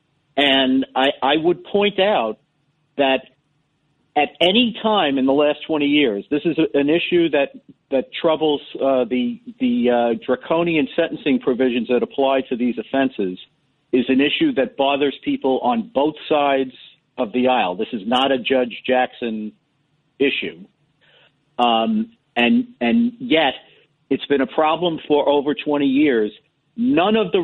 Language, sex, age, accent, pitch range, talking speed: English, male, 50-69, American, 125-155 Hz, 150 wpm